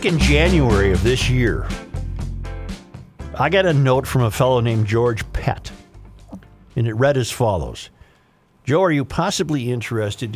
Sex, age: male, 50-69